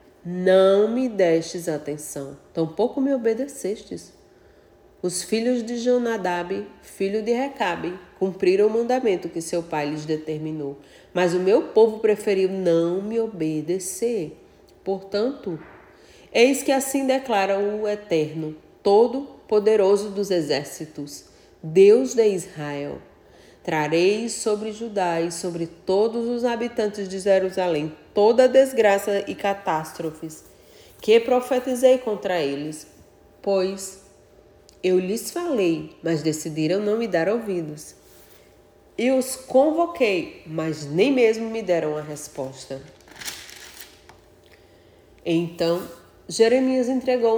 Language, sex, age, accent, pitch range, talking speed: Portuguese, female, 30-49, Brazilian, 165-225 Hz, 110 wpm